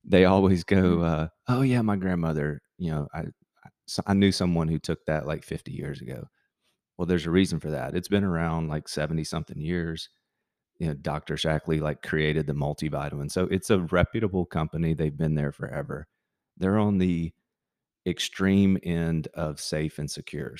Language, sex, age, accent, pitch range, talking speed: English, male, 30-49, American, 75-90 Hz, 180 wpm